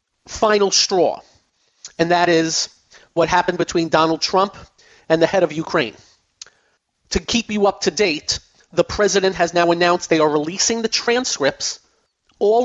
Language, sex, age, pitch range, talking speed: English, male, 40-59, 165-230 Hz, 150 wpm